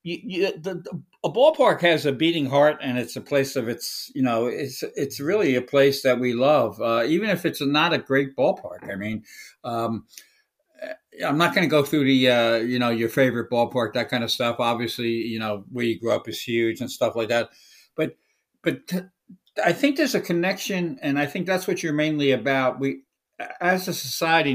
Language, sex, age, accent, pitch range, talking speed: English, male, 60-79, American, 120-155 Hz, 200 wpm